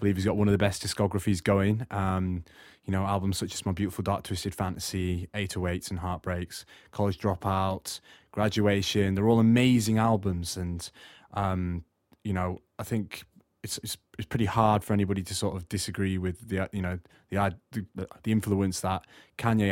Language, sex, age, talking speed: English, male, 20-39, 175 wpm